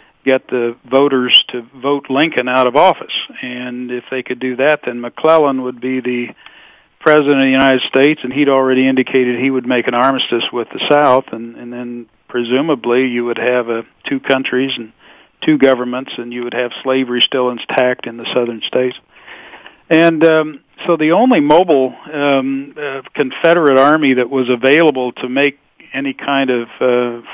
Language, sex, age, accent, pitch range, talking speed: English, male, 50-69, American, 125-140 Hz, 175 wpm